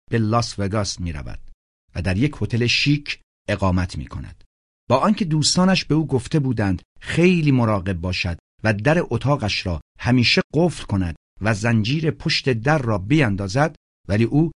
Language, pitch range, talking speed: Persian, 95-145 Hz, 150 wpm